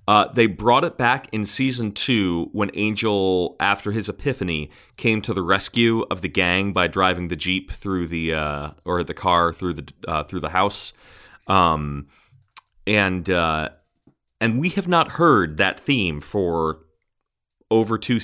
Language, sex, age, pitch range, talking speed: English, male, 30-49, 85-105 Hz, 160 wpm